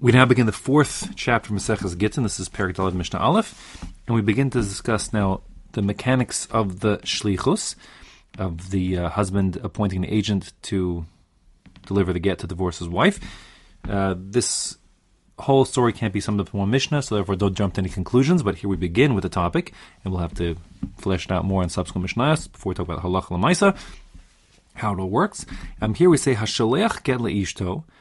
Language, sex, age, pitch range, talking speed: English, male, 30-49, 95-125 Hz, 200 wpm